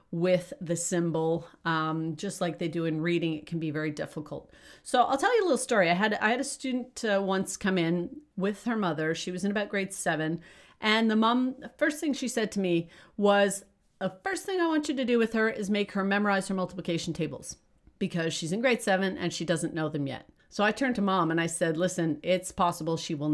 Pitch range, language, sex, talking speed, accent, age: 170-225 Hz, English, female, 240 wpm, American, 40-59